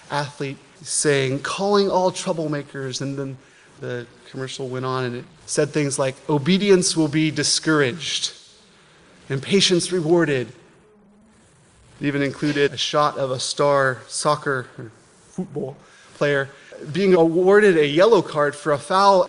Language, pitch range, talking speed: English, 140-180 Hz, 135 wpm